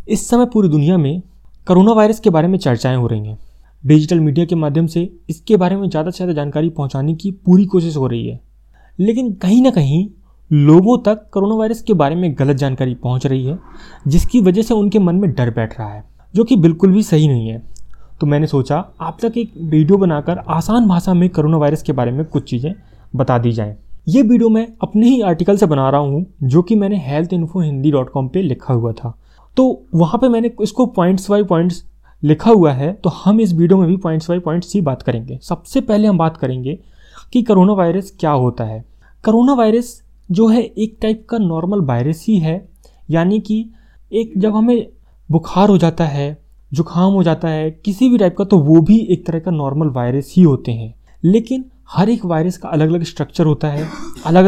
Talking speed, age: 205 wpm, 20-39